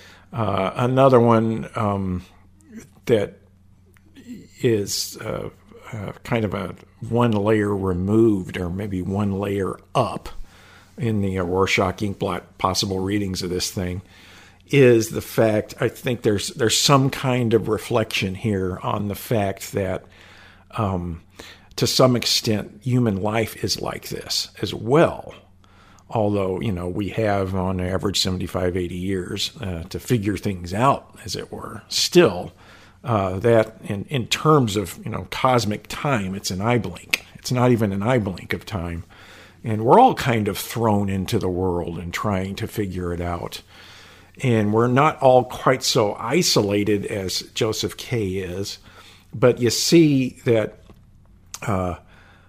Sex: male